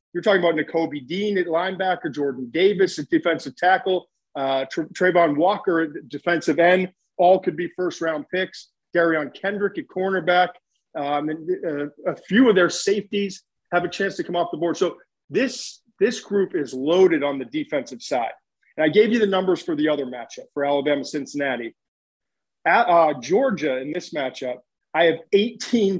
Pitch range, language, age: 150-185 Hz, English, 40-59